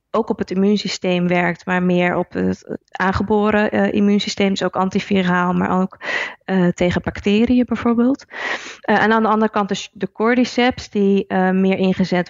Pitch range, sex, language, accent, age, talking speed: 185-215 Hz, female, Dutch, Dutch, 20-39, 165 wpm